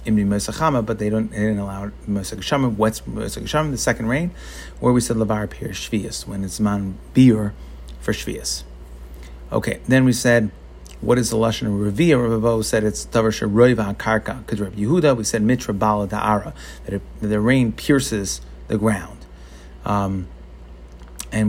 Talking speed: 155 wpm